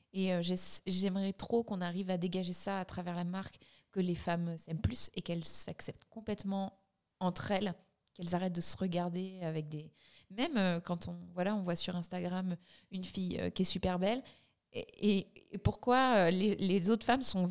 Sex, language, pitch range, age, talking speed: female, French, 175-195 Hz, 30-49, 180 wpm